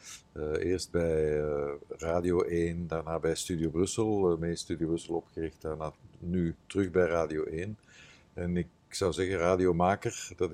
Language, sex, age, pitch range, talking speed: Dutch, male, 50-69, 80-90 Hz, 155 wpm